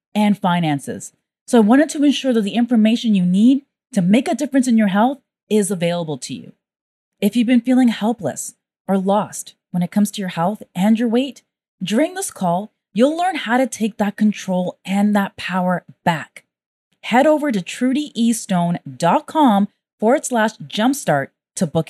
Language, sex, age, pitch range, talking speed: English, female, 20-39, 180-250 Hz, 170 wpm